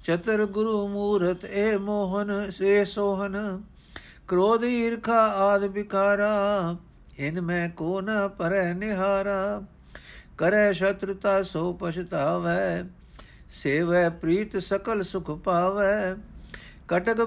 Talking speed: 95 wpm